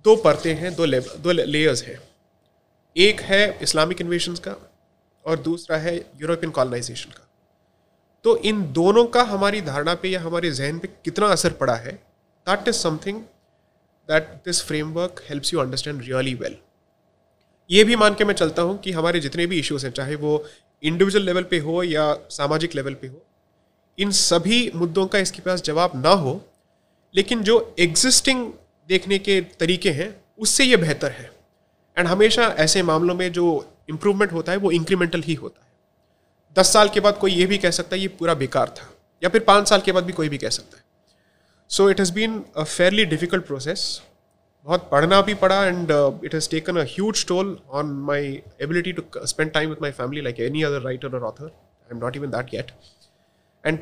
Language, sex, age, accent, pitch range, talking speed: Hindi, male, 30-49, native, 150-195 Hz, 195 wpm